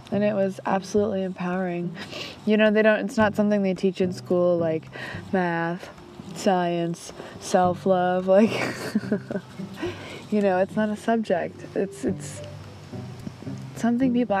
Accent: American